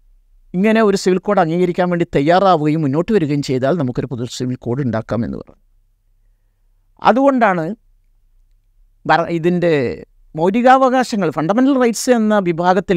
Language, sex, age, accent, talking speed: Malayalam, male, 50-69, native, 105 wpm